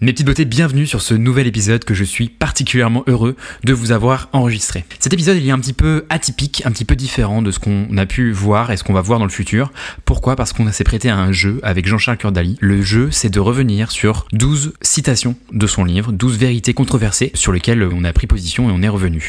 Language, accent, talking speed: French, French, 245 wpm